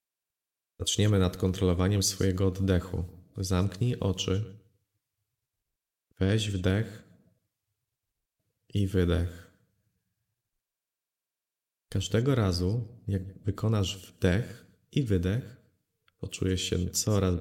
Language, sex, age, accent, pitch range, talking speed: Polish, male, 30-49, native, 95-105 Hz, 70 wpm